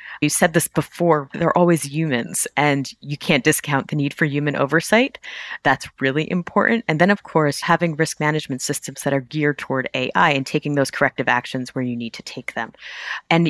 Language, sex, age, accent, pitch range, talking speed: English, female, 30-49, American, 135-165 Hz, 200 wpm